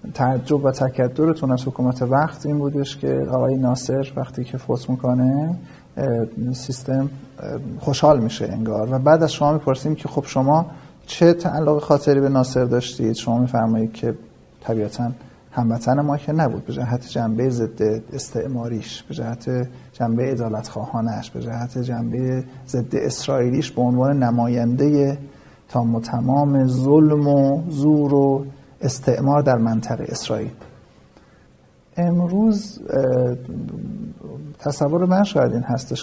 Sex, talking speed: male, 125 wpm